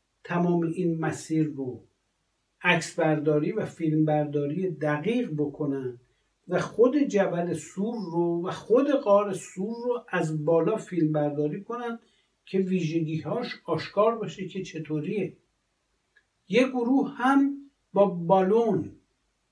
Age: 60-79